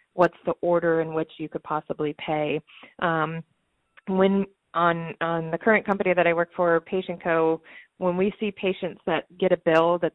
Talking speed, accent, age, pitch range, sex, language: 175 wpm, American, 30-49, 160-180 Hz, female, English